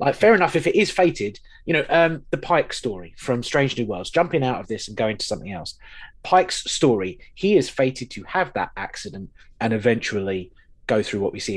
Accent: British